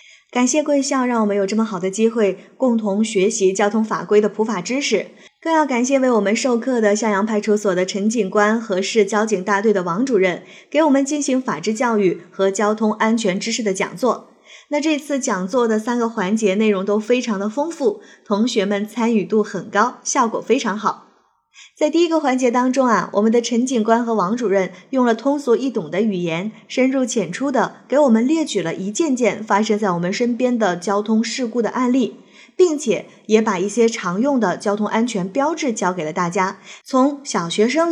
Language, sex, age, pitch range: Chinese, female, 20-39, 205-250 Hz